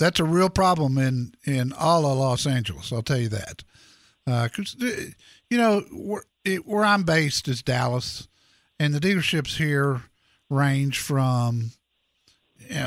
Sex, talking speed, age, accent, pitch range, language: male, 150 wpm, 50-69, American, 130-170 Hz, English